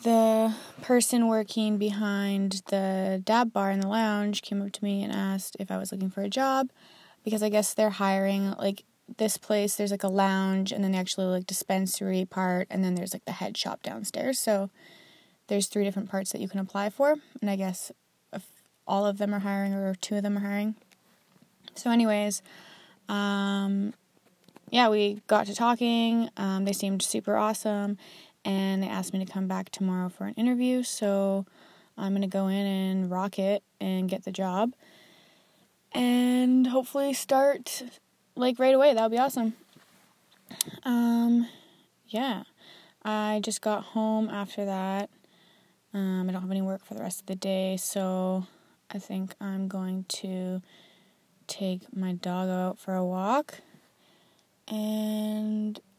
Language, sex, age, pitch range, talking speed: English, female, 20-39, 190-220 Hz, 165 wpm